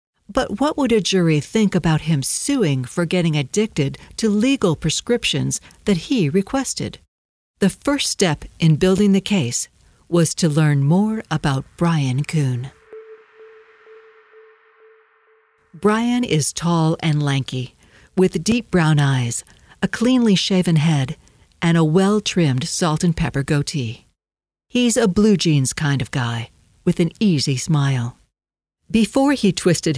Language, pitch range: English, 145-205 Hz